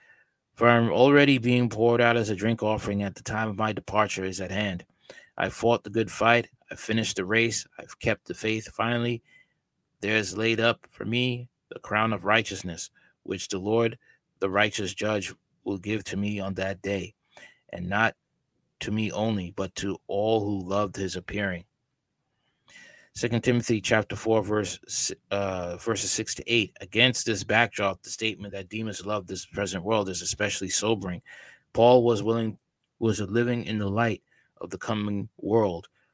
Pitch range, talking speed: 100-115 Hz, 170 wpm